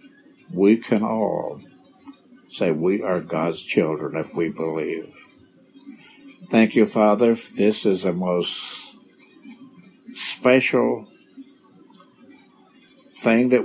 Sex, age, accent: male, 60-79, American